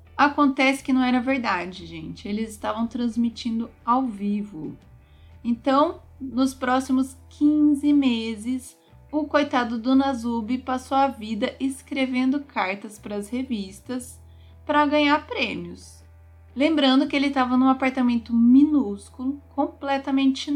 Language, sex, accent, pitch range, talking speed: Portuguese, female, Brazilian, 205-270 Hz, 115 wpm